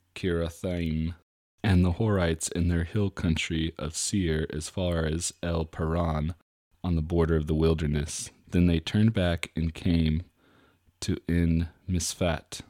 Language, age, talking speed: English, 30-49, 130 wpm